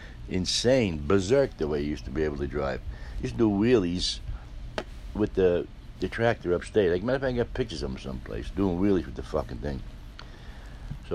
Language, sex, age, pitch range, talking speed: English, male, 60-79, 80-110 Hz, 205 wpm